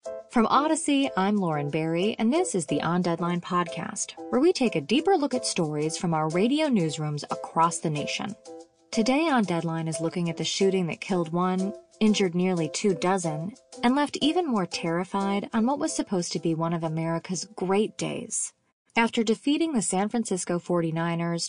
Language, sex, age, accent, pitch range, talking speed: English, female, 20-39, American, 165-225 Hz, 180 wpm